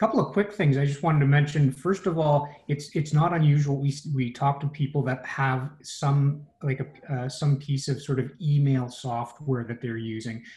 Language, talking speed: English, 210 wpm